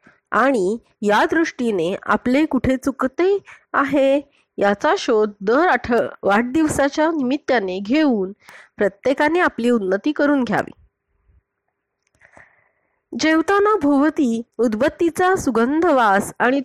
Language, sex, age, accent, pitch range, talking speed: Marathi, female, 20-39, native, 200-295 Hz, 90 wpm